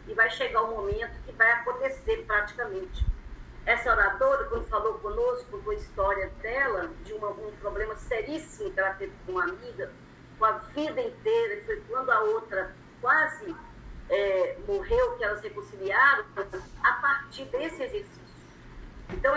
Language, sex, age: Portuguese, female, 40-59